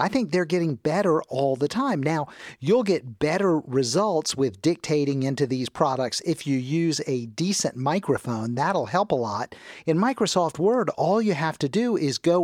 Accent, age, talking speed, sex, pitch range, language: American, 50-69, 185 wpm, male, 145-200 Hz, English